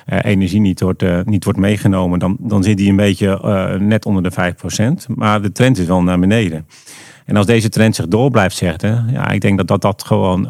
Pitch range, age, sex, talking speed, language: 95-115 Hz, 40-59, male, 225 wpm, English